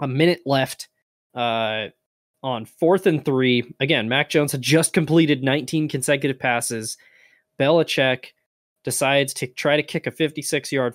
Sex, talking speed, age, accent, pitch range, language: male, 135 wpm, 20-39, American, 115-155 Hz, English